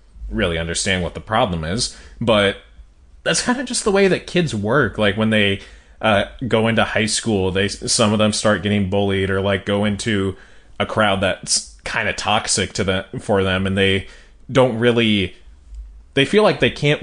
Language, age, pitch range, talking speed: English, 30-49, 95-115 Hz, 190 wpm